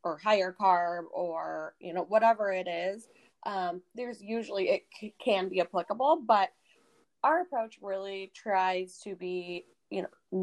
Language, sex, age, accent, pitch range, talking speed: English, female, 20-39, American, 175-210 Hz, 145 wpm